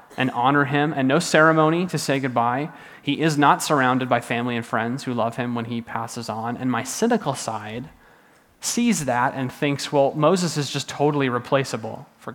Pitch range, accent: 120-145 Hz, American